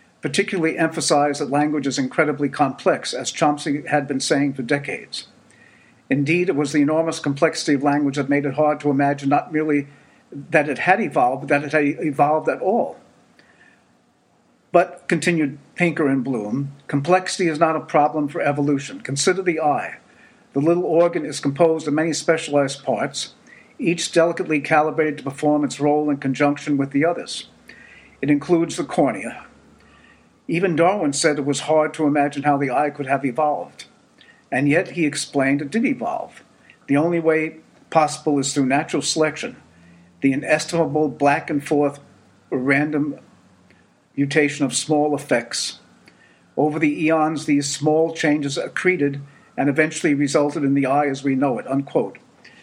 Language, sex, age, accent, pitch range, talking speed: English, male, 50-69, American, 140-160 Hz, 155 wpm